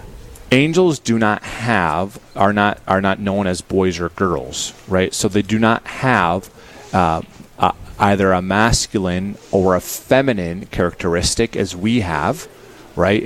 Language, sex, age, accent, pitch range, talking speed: English, male, 30-49, American, 95-115 Hz, 145 wpm